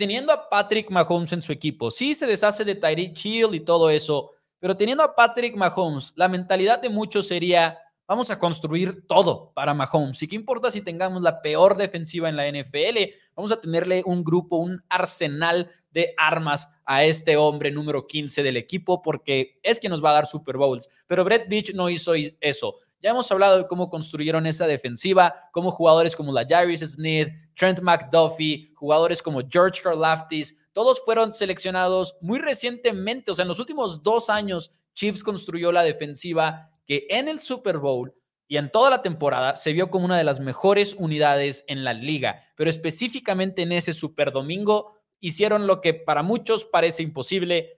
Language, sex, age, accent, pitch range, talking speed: Spanish, male, 20-39, Mexican, 155-195 Hz, 180 wpm